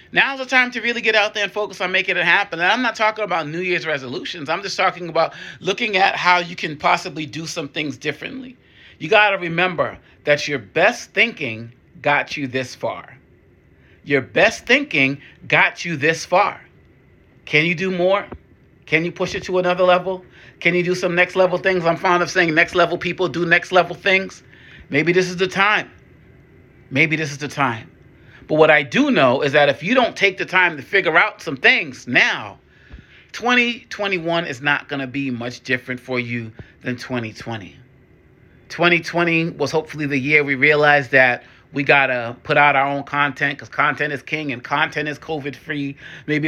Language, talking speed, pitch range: English, 195 wpm, 140-180 Hz